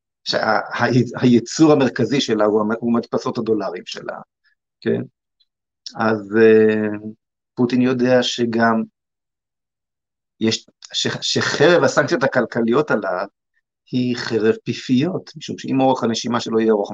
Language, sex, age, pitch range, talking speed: Hebrew, male, 50-69, 105-120 Hz, 110 wpm